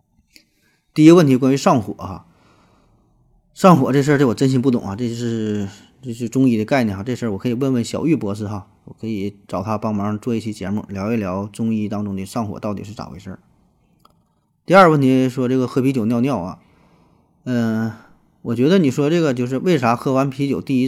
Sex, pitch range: male, 110-150 Hz